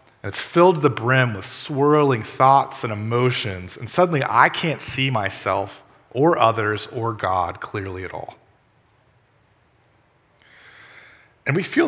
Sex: male